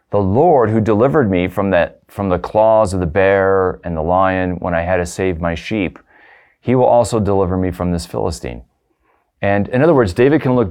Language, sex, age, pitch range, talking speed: English, male, 40-59, 85-100 Hz, 215 wpm